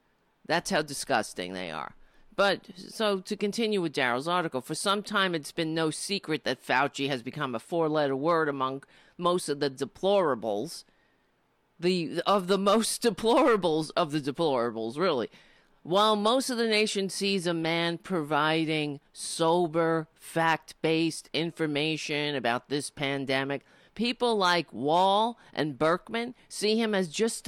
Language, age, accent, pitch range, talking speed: English, 50-69, American, 160-215 Hz, 140 wpm